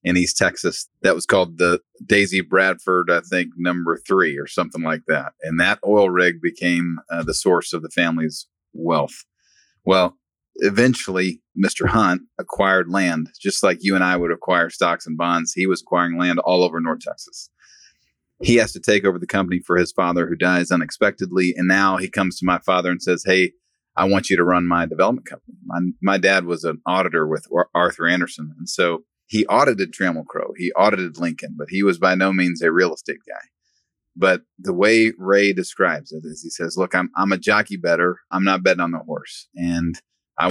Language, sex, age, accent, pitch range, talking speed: English, male, 30-49, American, 85-100 Hz, 200 wpm